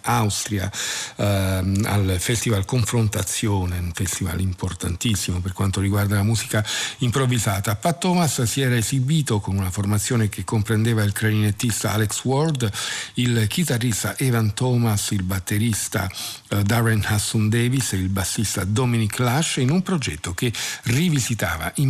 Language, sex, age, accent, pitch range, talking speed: Italian, male, 50-69, native, 100-125 Hz, 130 wpm